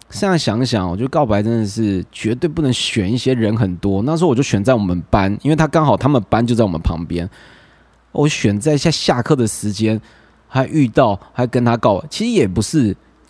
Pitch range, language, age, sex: 105-155 Hz, Chinese, 20-39, male